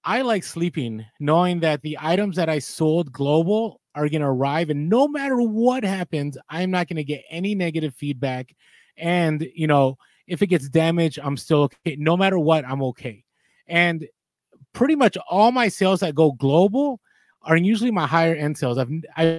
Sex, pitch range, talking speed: male, 150-190 Hz, 175 wpm